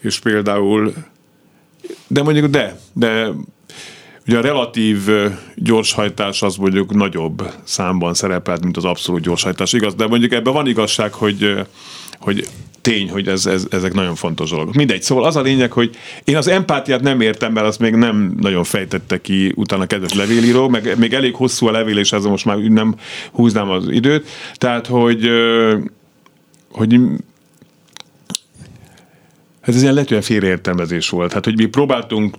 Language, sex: Hungarian, male